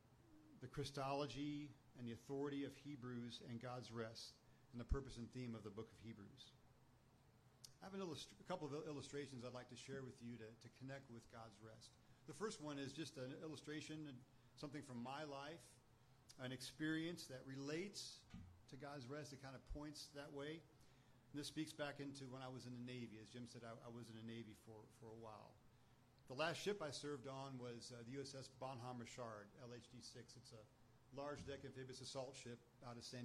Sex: male